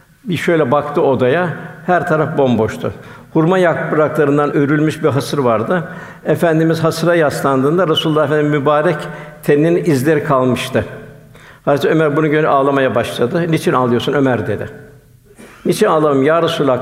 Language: Turkish